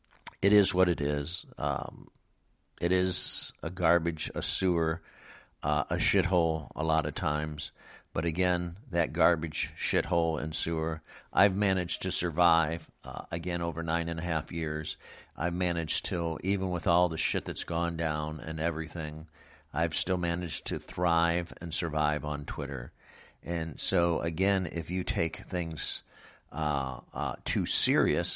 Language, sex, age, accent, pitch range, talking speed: English, male, 50-69, American, 75-90 Hz, 150 wpm